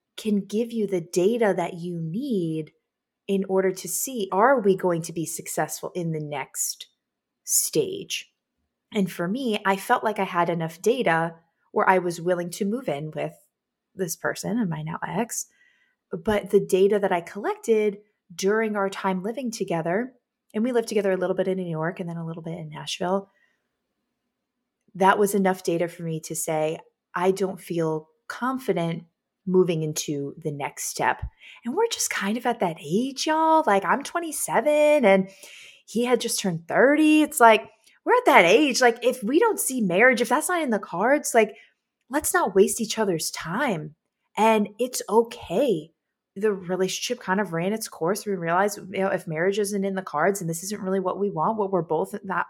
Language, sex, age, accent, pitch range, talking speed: English, female, 20-39, American, 180-240 Hz, 190 wpm